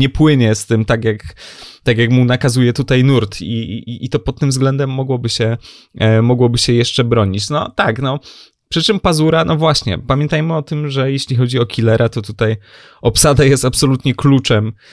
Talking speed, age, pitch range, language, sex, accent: 175 wpm, 20-39, 110-135 Hz, Polish, male, native